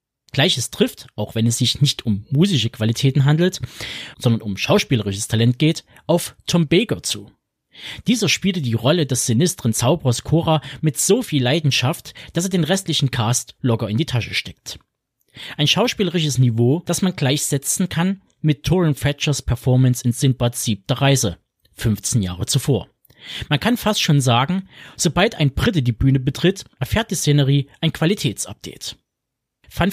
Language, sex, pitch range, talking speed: German, male, 125-170 Hz, 155 wpm